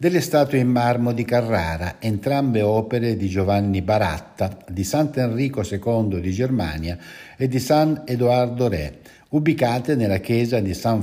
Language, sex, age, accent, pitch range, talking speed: Italian, male, 60-79, native, 95-125 Hz, 140 wpm